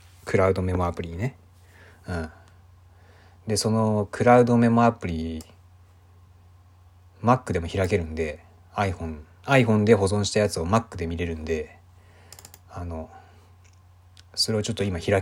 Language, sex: Japanese, male